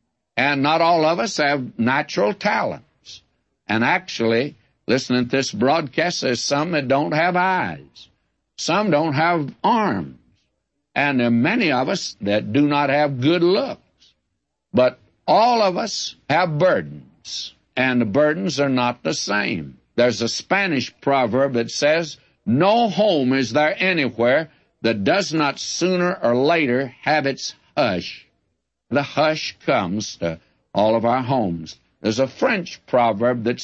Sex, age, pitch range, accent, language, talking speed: male, 60-79, 120-150 Hz, American, English, 145 wpm